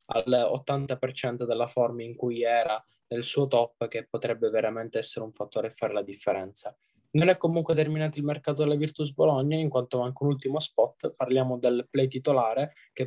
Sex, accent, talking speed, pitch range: male, native, 180 wpm, 115-135 Hz